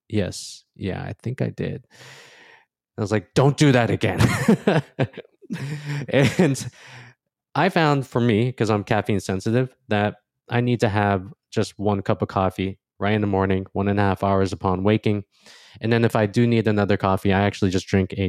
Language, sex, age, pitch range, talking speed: English, male, 20-39, 95-120 Hz, 185 wpm